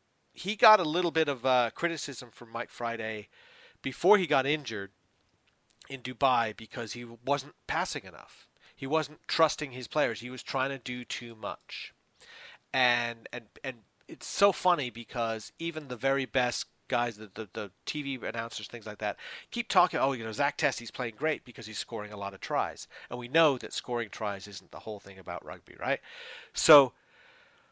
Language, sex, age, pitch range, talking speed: English, male, 40-59, 115-145 Hz, 180 wpm